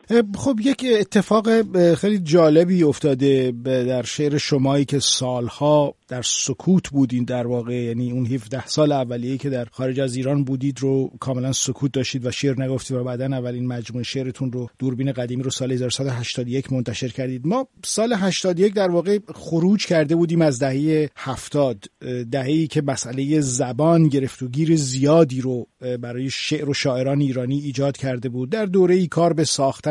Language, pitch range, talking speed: Persian, 135-165 Hz, 165 wpm